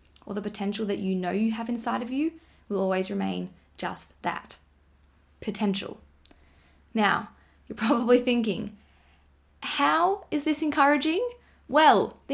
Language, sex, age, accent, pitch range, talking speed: English, female, 10-29, Australian, 210-280 Hz, 130 wpm